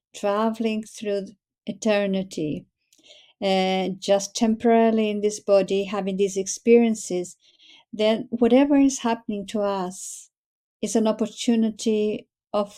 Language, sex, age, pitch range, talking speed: English, female, 50-69, 200-230 Hz, 105 wpm